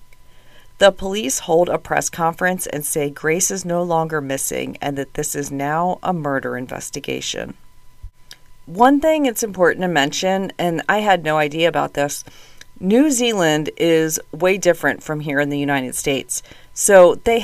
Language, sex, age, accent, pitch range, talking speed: English, female, 40-59, American, 145-190 Hz, 160 wpm